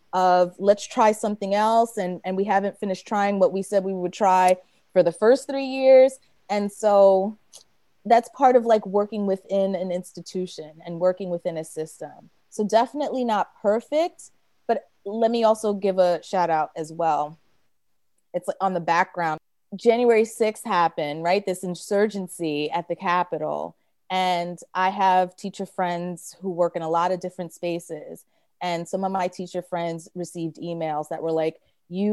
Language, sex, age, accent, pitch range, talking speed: English, female, 30-49, American, 170-200 Hz, 165 wpm